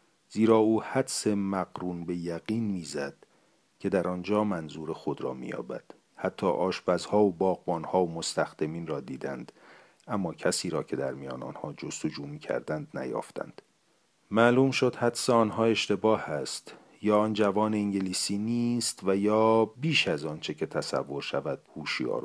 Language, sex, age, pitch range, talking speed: Persian, male, 40-59, 90-115 Hz, 140 wpm